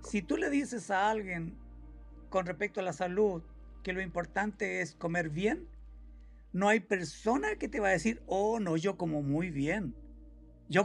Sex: male